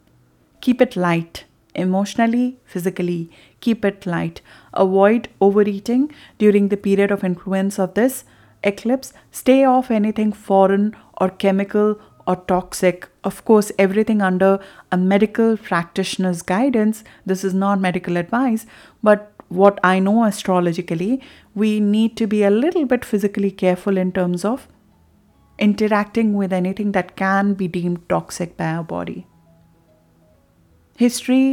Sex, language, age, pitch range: female, English, 30-49, 180-215 Hz